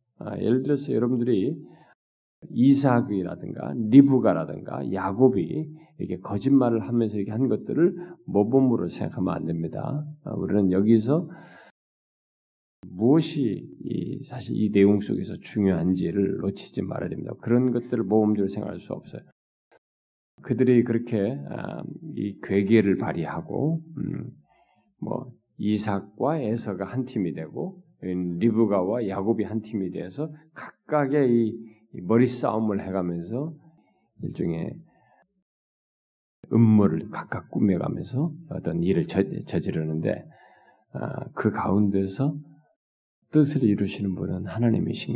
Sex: male